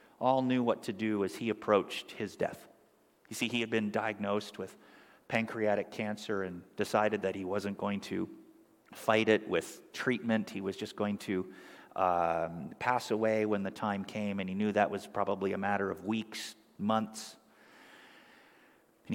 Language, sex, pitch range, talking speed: English, male, 105-125 Hz, 170 wpm